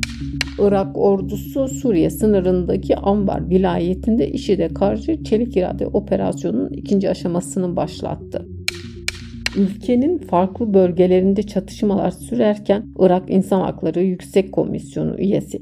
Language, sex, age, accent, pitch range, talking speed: Turkish, female, 60-79, native, 165-210 Hz, 100 wpm